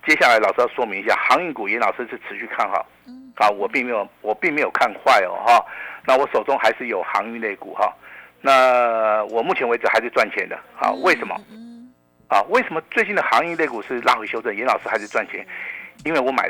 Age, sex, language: 50-69, male, Chinese